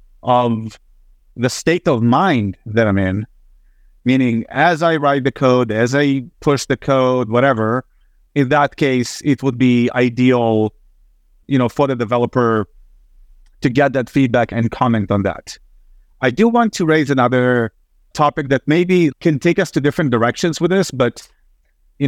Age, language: 30-49, English